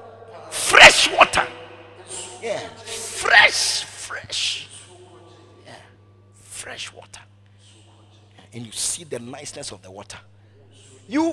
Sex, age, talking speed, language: male, 50-69, 90 wpm, English